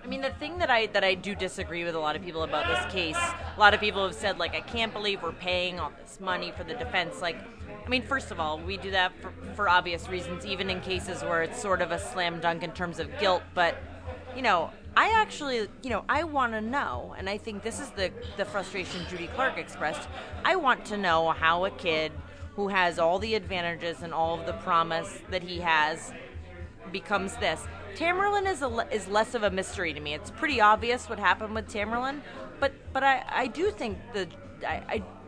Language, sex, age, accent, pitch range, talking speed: English, female, 30-49, American, 170-225 Hz, 225 wpm